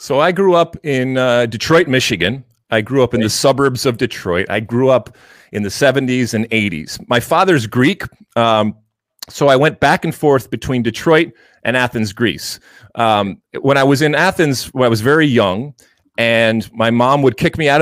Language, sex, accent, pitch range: English, male, American, 110-140 Hz